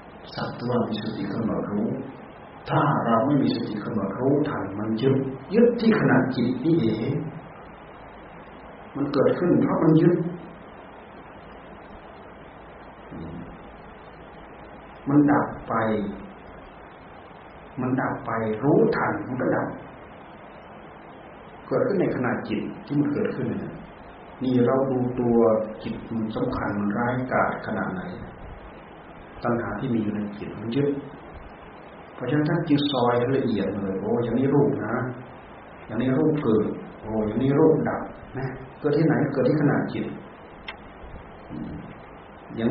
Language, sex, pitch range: Thai, male, 110-145 Hz